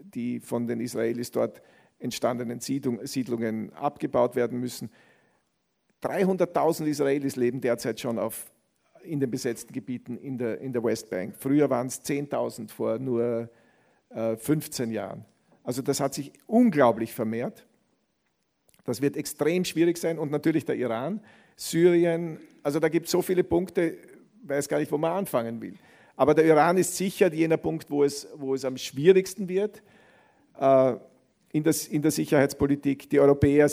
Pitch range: 125-155 Hz